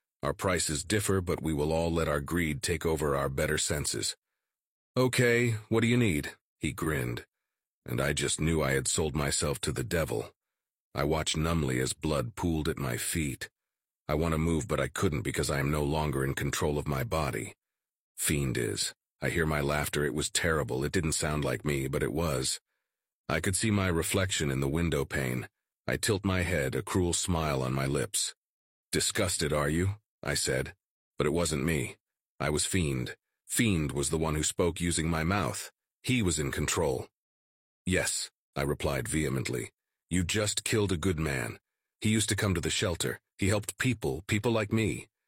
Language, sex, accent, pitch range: English, male, American, 70-95 Hz